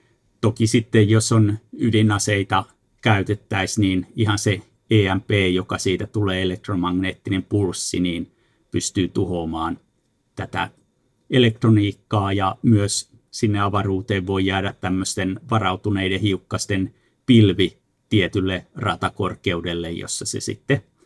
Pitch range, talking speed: 95-110 Hz, 100 wpm